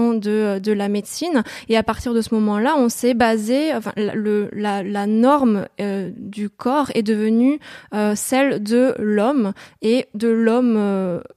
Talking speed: 165 wpm